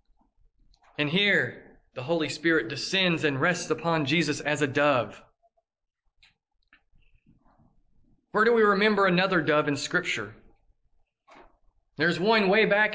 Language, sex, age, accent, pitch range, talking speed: English, male, 40-59, American, 155-195 Hz, 115 wpm